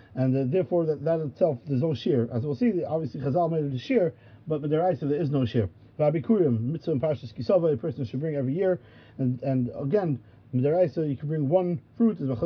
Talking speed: 235 wpm